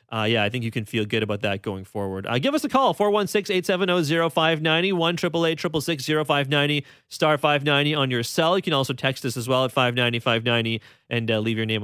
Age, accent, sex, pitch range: 30-49, American, male, 130-170 Hz